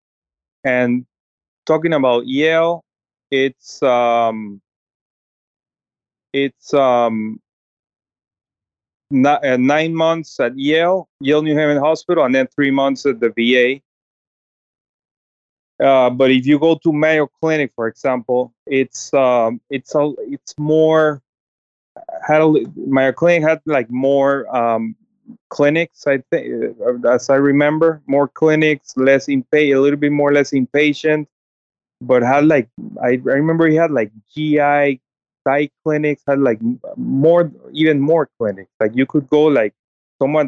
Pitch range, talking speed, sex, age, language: 125-155 Hz, 135 wpm, male, 20-39, English